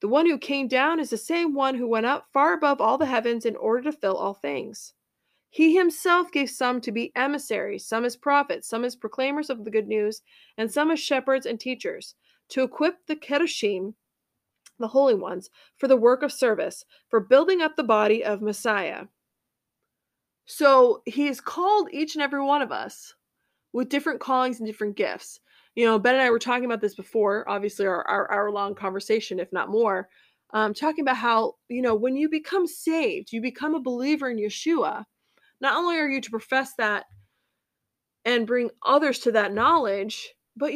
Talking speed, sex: 190 wpm, female